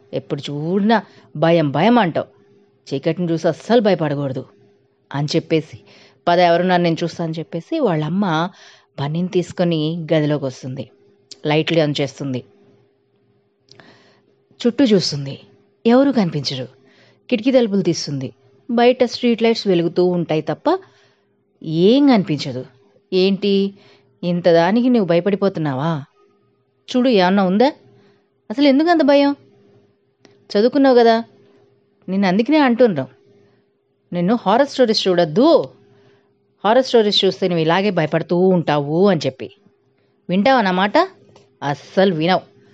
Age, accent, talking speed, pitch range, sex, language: 20-39, native, 105 wpm, 155-220 Hz, female, Telugu